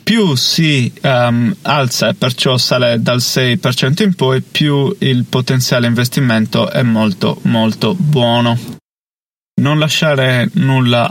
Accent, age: native, 30-49